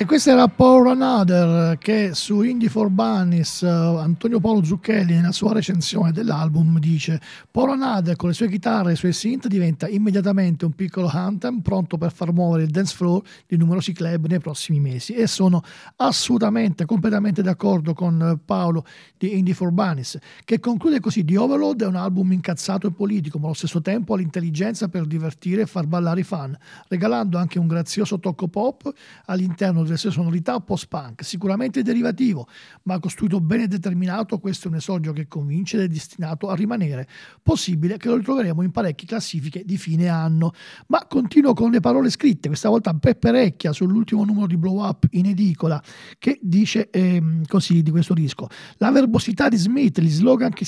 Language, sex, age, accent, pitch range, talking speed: Italian, male, 50-69, native, 170-220 Hz, 180 wpm